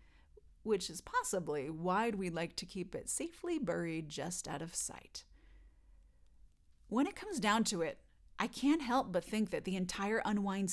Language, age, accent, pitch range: English, 30-49, American, 175-235 Hz